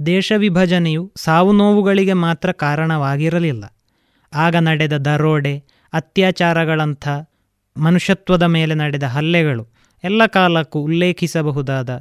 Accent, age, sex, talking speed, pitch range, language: native, 20-39, male, 85 wpm, 140-185 Hz, Kannada